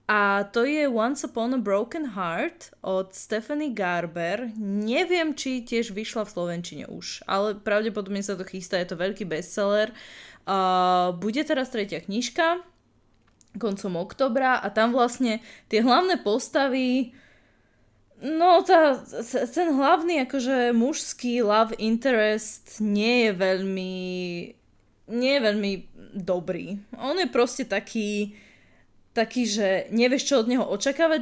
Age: 10-29